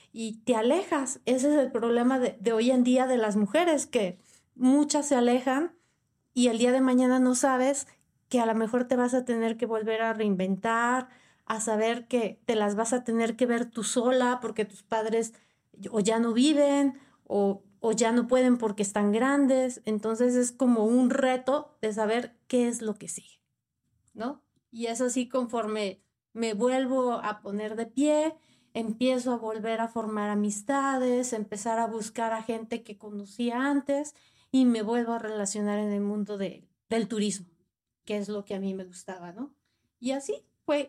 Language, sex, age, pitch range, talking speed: Spanish, female, 30-49, 220-255 Hz, 185 wpm